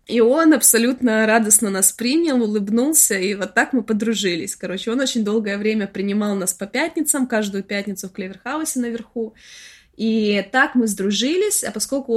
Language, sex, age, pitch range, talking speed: Russian, female, 20-39, 195-245 Hz, 160 wpm